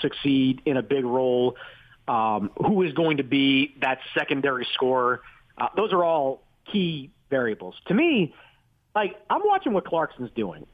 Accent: American